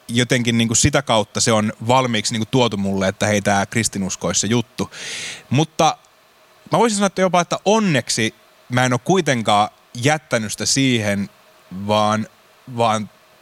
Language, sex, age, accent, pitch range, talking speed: Finnish, male, 20-39, native, 105-135 Hz, 145 wpm